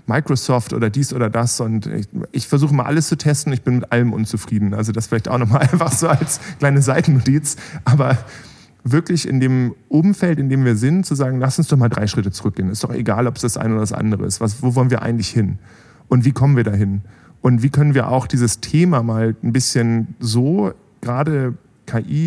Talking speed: 220 wpm